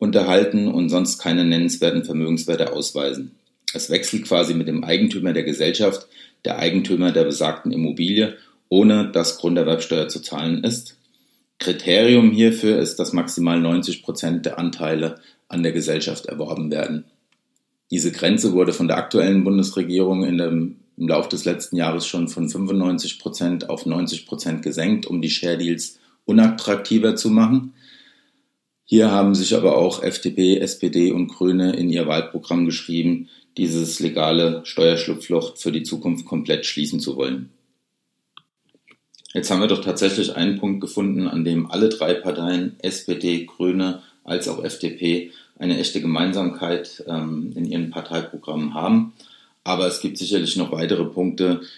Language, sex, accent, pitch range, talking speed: German, male, German, 85-100 Hz, 140 wpm